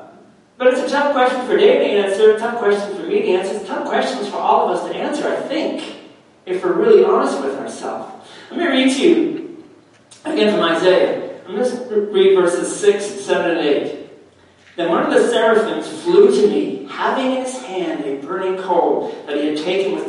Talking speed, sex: 205 wpm, male